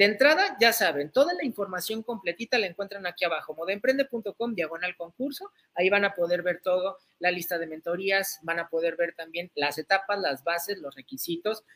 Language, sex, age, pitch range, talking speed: Spanish, male, 40-59, 170-240 Hz, 185 wpm